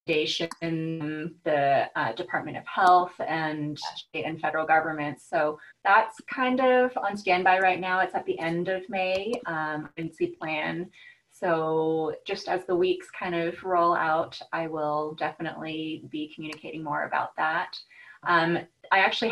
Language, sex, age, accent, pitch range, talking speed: English, female, 20-39, American, 160-185 Hz, 150 wpm